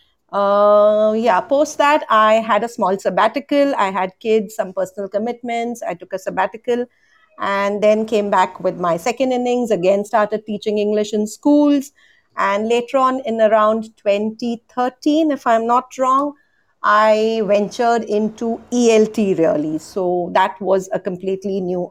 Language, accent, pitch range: English, Indian, 190-240 Hz